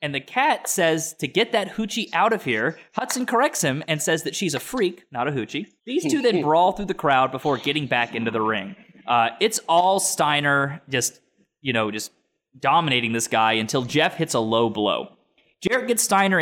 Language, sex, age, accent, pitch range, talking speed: English, male, 20-39, American, 130-195 Hz, 205 wpm